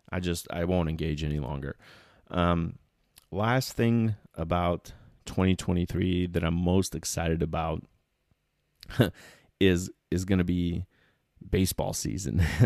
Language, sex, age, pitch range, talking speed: English, male, 30-49, 85-100 Hz, 115 wpm